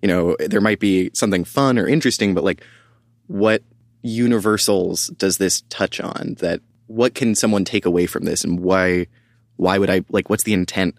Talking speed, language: 185 wpm, English